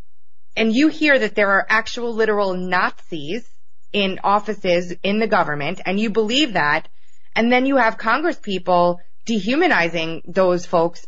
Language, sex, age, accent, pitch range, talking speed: English, female, 20-39, American, 180-230 Hz, 145 wpm